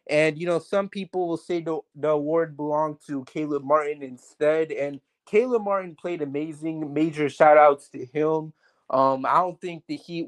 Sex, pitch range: male, 145-170 Hz